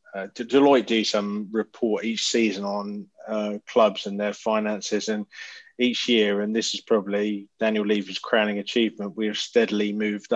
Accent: British